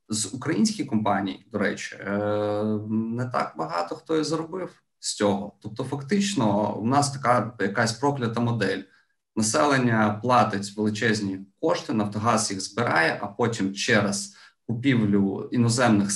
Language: Ukrainian